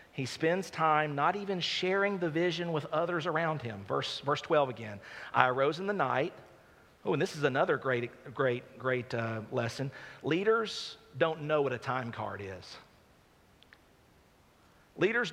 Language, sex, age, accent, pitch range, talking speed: English, male, 40-59, American, 135-195 Hz, 155 wpm